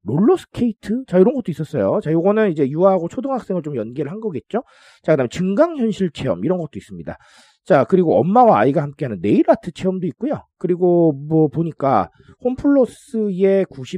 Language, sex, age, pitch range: Korean, male, 40-59, 140-215 Hz